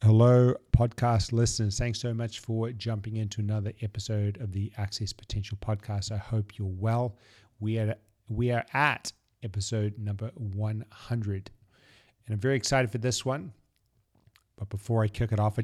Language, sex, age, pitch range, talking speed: English, male, 40-59, 105-120 Hz, 160 wpm